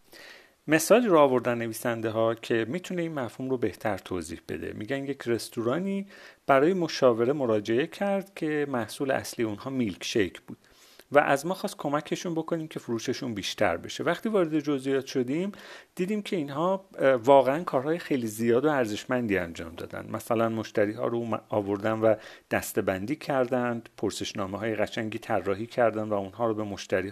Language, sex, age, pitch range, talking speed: Persian, male, 40-59, 110-145 Hz, 155 wpm